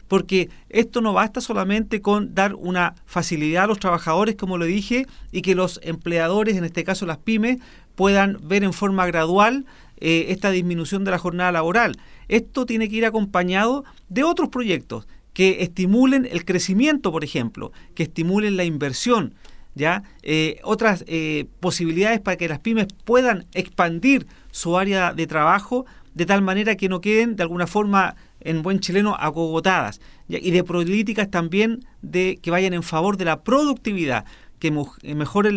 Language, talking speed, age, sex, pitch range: Spanish, 160 wpm, 40-59, male, 170-220 Hz